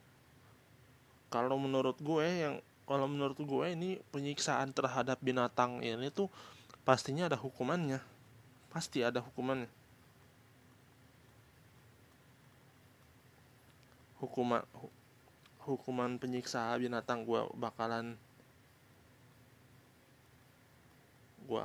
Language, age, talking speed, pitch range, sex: Indonesian, 20-39, 75 wpm, 120-135 Hz, male